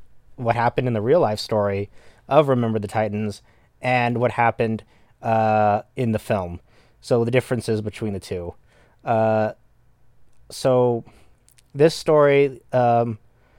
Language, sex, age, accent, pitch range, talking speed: English, male, 30-49, American, 110-125 Hz, 130 wpm